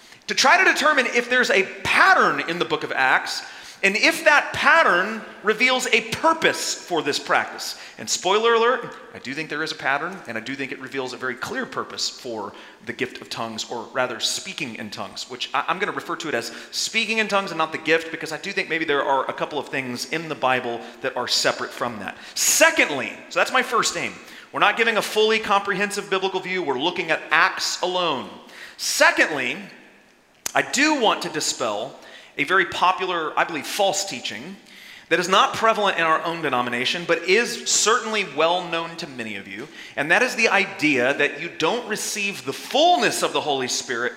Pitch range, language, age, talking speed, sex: 155-235 Hz, English, 30-49, 205 wpm, male